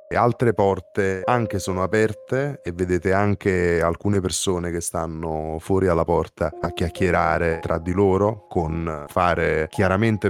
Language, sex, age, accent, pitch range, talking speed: Italian, male, 20-39, native, 85-115 Hz, 140 wpm